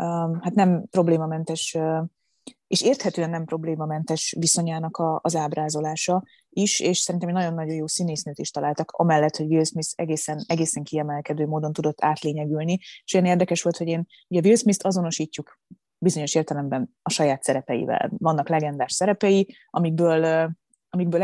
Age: 20-39